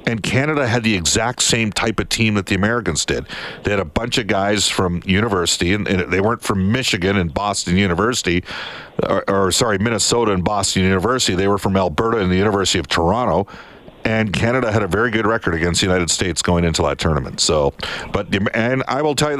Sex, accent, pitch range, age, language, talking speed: male, American, 95-125 Hz, 50-69, English, 215 wpm